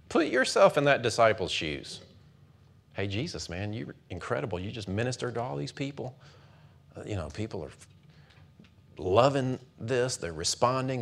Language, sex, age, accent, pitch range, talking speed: English, male, 40-59, American, 105-150 Hz, 140 wpm